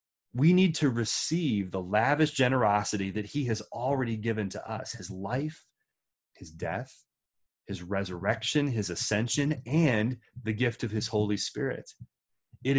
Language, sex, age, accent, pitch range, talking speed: English, male, 30-49, American, 105-135 Hz, 140 wpm